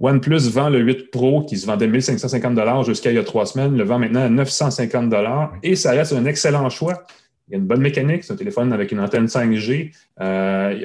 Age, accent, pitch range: 30-49, Canadian, 115-155 Hz